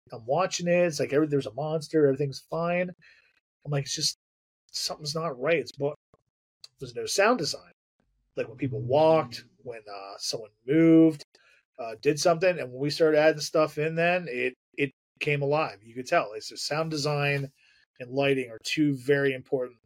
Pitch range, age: 120-155 Hz, 30-49